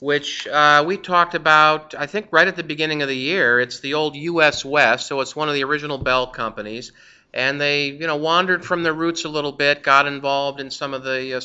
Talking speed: 235 wpm